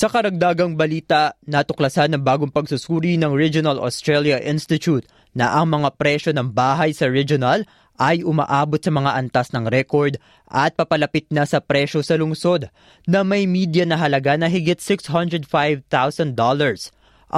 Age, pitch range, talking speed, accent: 20-39, 140-170 Hz, 140 wpm, native